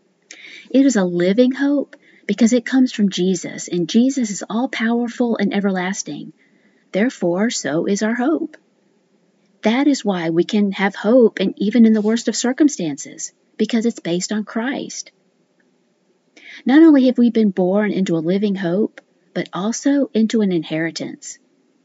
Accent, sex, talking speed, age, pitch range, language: American, female, 150 wpm, 40-59, 195-250 Hz, English